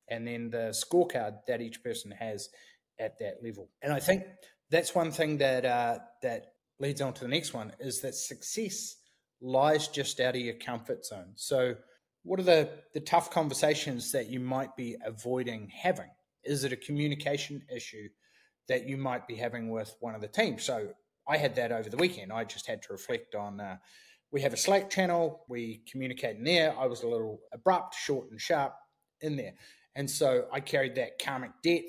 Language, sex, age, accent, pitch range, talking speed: English, male, 30-49, Australian, 115-160 Hz, 195 wpm